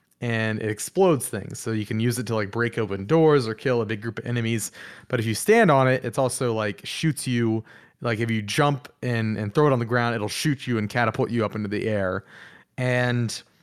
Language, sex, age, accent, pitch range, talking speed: English, male, 30-49, American, 110-140 Hz, 240 wpm